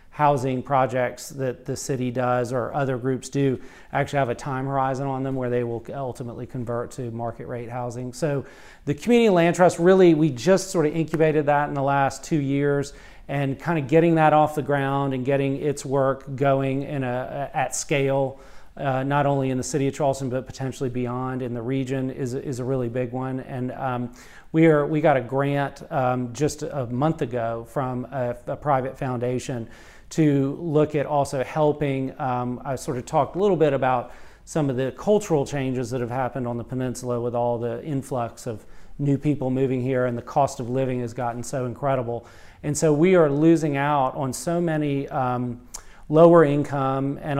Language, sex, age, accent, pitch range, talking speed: English, male, 40-59, American, 125-145 Hz, 195 wpm